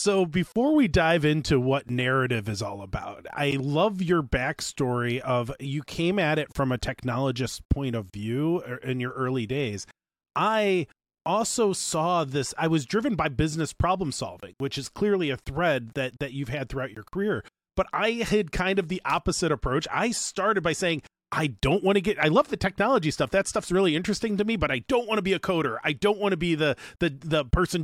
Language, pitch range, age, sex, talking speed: English, 140-190 Hz, 30-49, male, 210 wpm